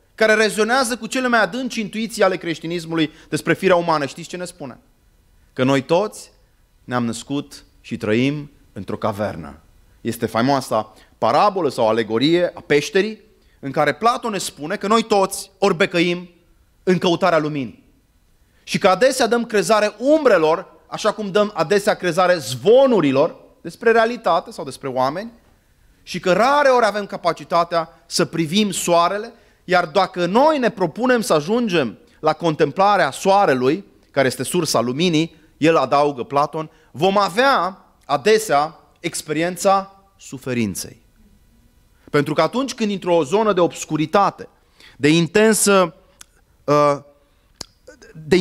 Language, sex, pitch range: Romanian, male, 145-205 Hz